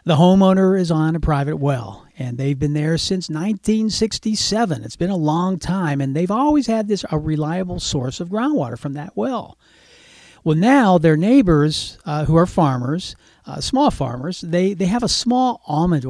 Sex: male